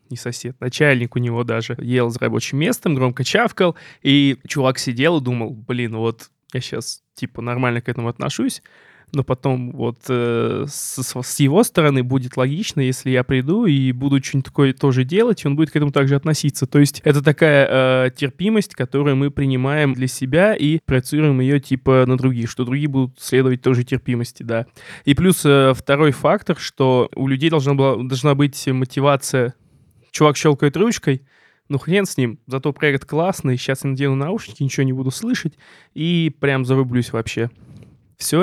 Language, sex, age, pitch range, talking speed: Russian, male, 20-39, 125-150 Hz, 175 wpm